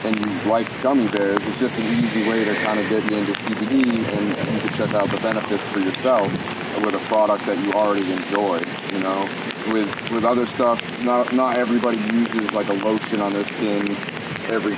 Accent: American